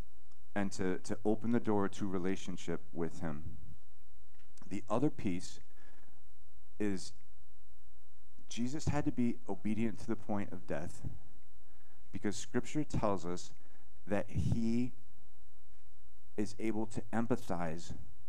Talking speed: 110 wpm